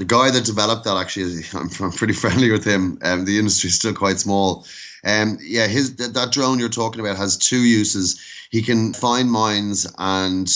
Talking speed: 205 wpm